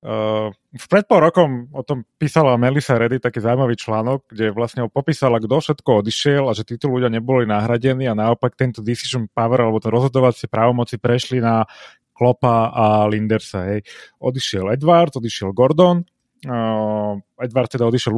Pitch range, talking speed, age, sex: 115-145 Hz, 150 wpm, 30-49, male